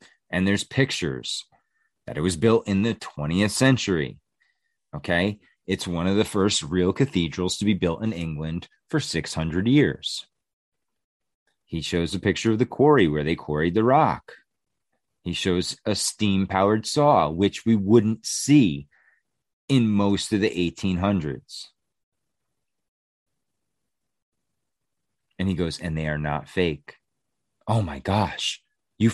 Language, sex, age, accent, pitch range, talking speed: English, male, 30-49, American, 85-125 Hz, 135 wpm